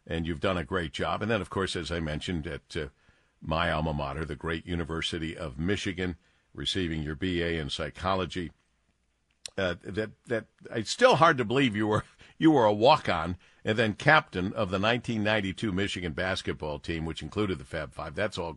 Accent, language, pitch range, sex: American, English, 90-125 Hz, male